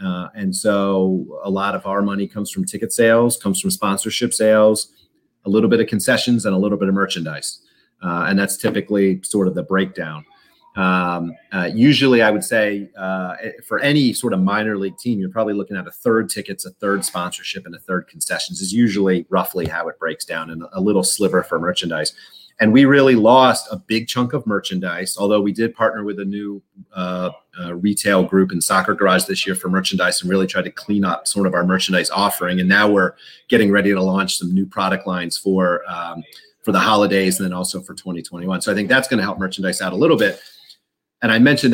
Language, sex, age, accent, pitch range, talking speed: English, male, 30-49, American, 95-110 Hz, 215 wpm